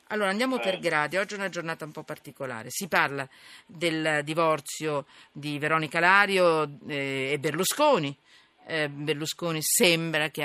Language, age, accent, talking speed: Italian, 50-69, native, 130 wpm